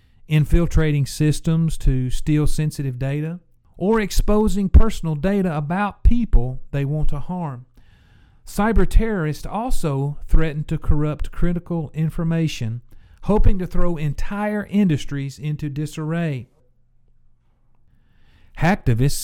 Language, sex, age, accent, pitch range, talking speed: English, male, 50-69, American, 125-165 Hz, 100 wpm